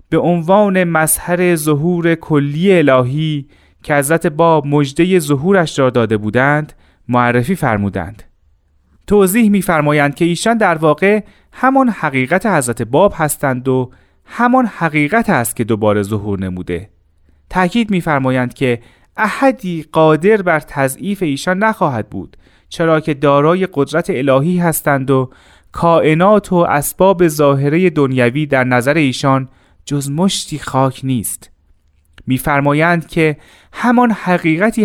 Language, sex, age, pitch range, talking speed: Persian, male, 30-49, 110-175 Hz, 115 wpm